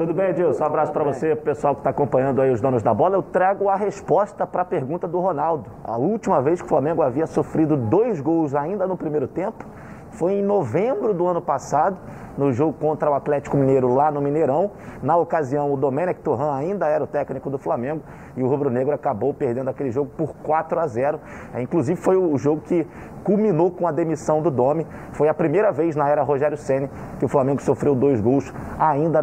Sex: male